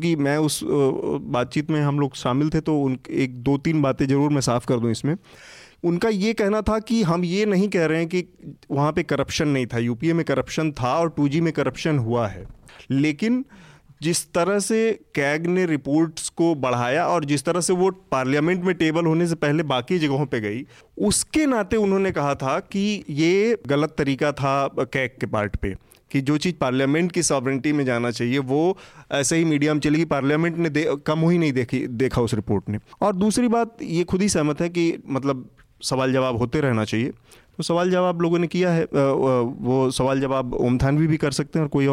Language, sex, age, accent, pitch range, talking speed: Hindi, male, 30-49, native, 135-170 Hz, 210 wpm